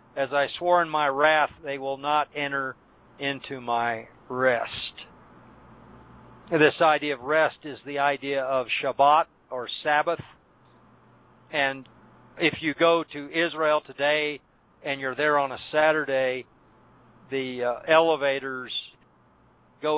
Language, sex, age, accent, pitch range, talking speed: English, male, 50-69, American, 130-150 Hz, 125 wpm